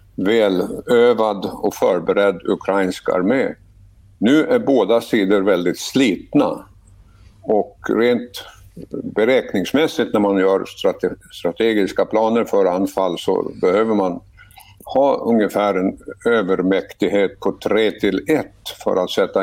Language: Swedish